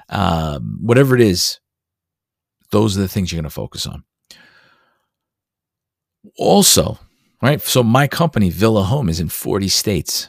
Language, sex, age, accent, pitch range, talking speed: English, male, 40-59, American, 85-105 Hz, 140 wpm